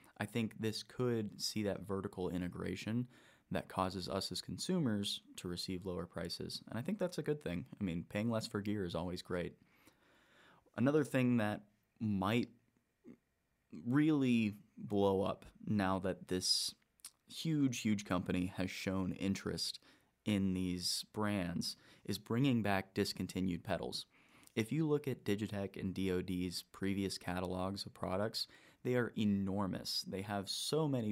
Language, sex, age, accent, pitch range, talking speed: English, male, 30-49, American, 95-110 Hz, 145 wpm